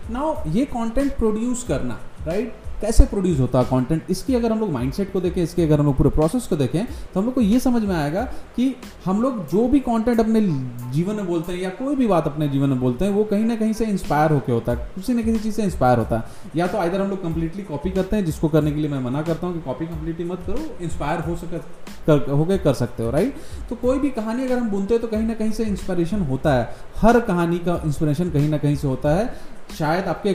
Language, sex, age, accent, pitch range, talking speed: Hindi, male, 30-49, native, 150-225 Hz, 260 wpm